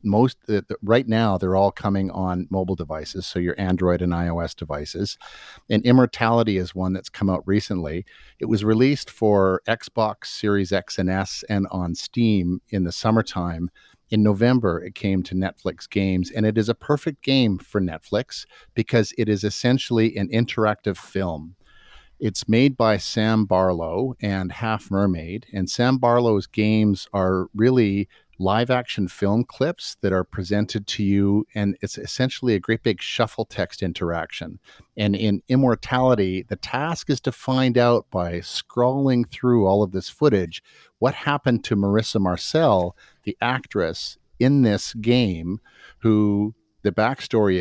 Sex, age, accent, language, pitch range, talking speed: male, 50-69, American, English, 95-120 Hz, 155 wpm